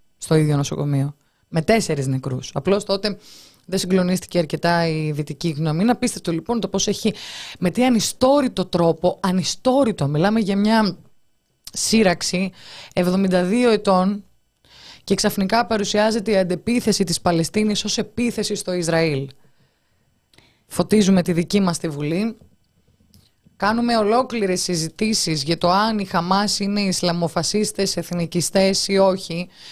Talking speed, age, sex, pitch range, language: 120 wpm, 20-39, female, 170-210 Hz, Greek